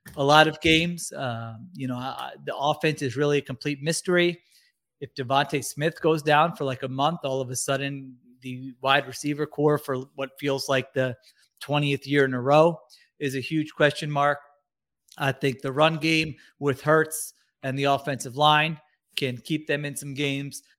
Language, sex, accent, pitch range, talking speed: English, male, American, 135-155 Hz, 180 wpm